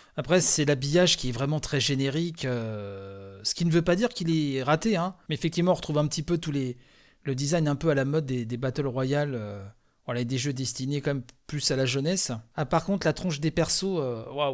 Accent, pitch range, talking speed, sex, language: French, 135-180 Hz, 245 wpm, male, French